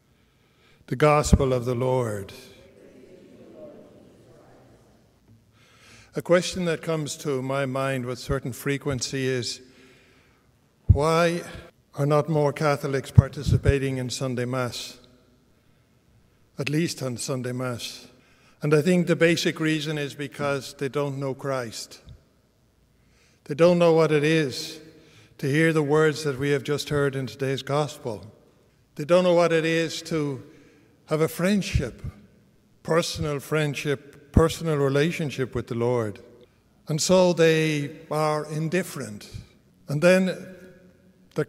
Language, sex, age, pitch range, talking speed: English, male, 60-79, 125-155 Hz, 125 wpm